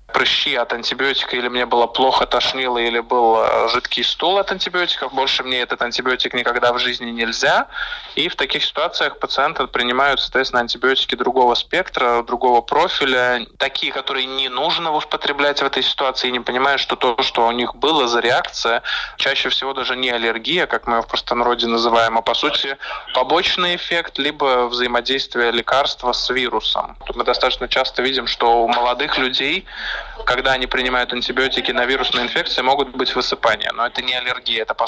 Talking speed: 170 wpm